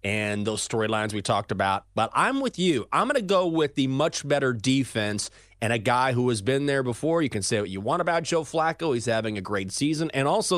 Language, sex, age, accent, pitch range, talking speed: English, male, 30-49, American, 100-150 Hz, 245 wpm